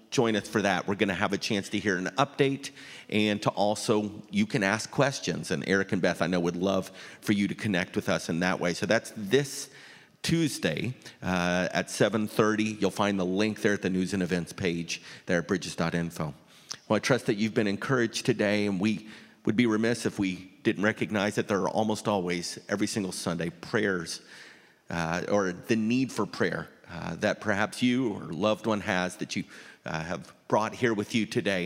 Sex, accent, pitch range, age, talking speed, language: male, American, 95-115 Hz, 40-59, 205 wpm, English